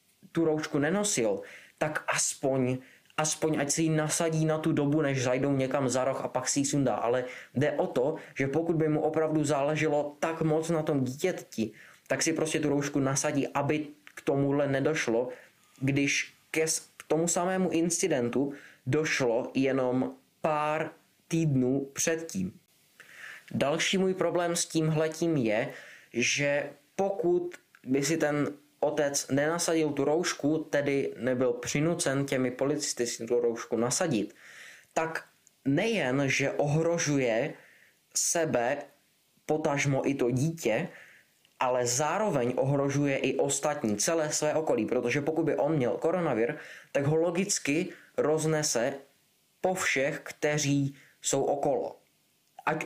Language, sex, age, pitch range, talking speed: Czech, male, 20-39, 135-160 Hz, 135 wpm